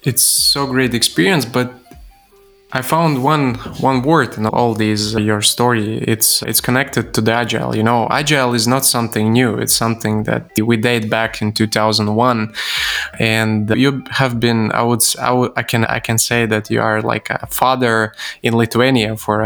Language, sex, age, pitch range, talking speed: English, male, 20-39, 110-130 Hz, 180 wpm